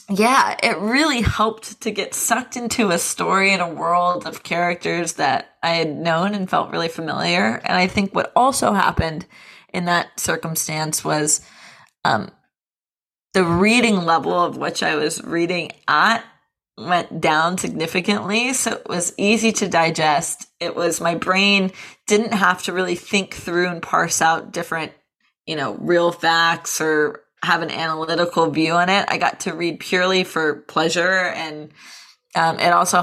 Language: English